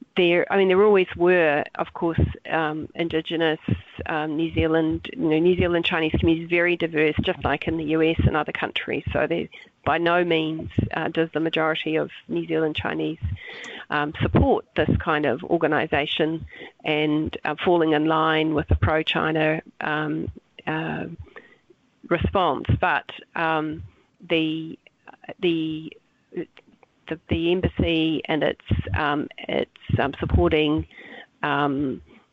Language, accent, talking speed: English, Australian, 135 wpm